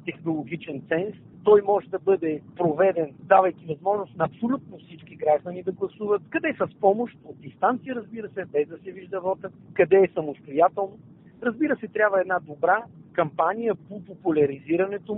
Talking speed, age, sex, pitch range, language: 155 wpm, 50-69, male, 160-210 Hz, Bulgarian